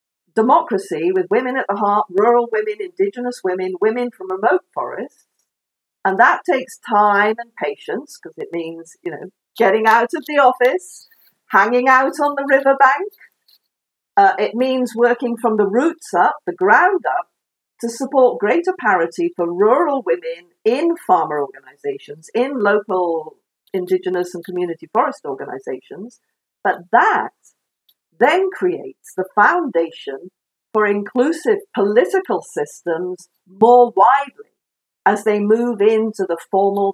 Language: English